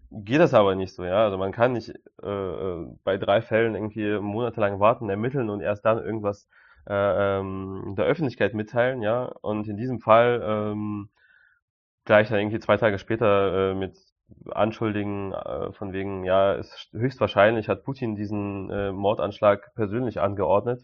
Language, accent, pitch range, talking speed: German, German, 105-120 Hz, 160 wpm